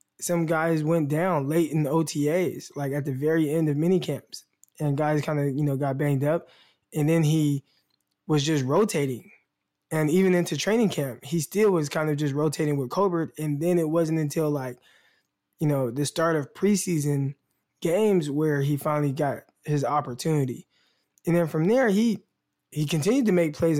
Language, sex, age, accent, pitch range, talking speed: English, male, 20-39, American, 145-170 Hz, 185 wpm